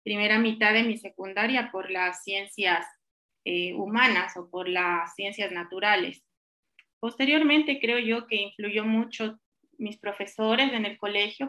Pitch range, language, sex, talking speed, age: 200-235 Hz, Spanish, female, 135 wpm, 20-39